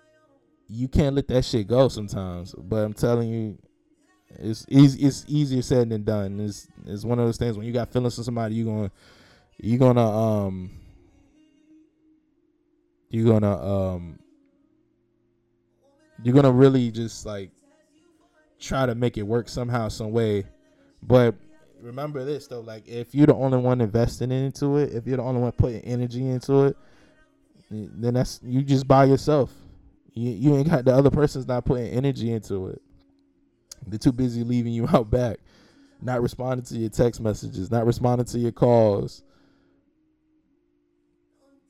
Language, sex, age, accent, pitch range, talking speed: English, male, 20-39, American, 105-150 Hz, 155 wpm